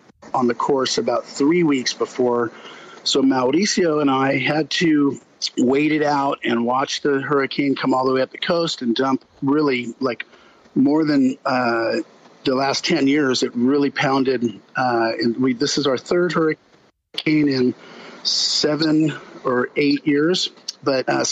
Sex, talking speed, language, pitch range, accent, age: male, 160 wpm, English, 130-155 Hz, American, 50-69